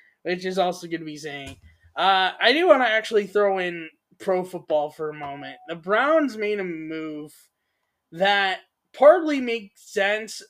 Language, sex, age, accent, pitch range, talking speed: English, male, 20-39, American, 165-210 Hz, 165 wpm